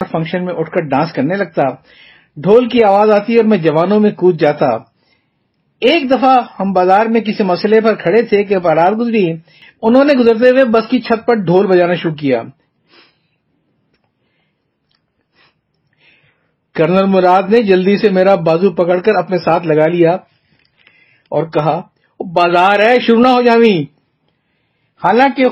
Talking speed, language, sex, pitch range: 155 wpm, Urdu, male, 170-230 Hz